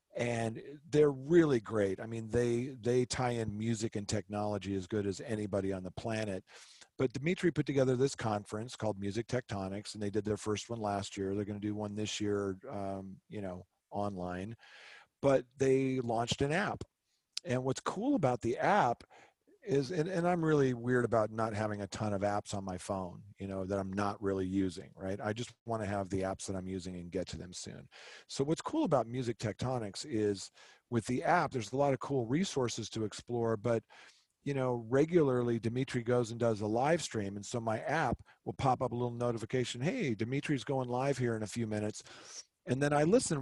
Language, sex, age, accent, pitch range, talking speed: English, male, 40-59, American, 105-135 Hz, 205 wpm